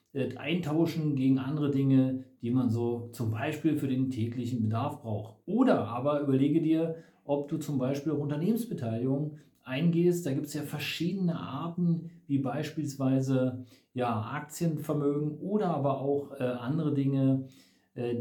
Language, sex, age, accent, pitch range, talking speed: German, male, 40-59, German, 120-150 Hz, 140 wpm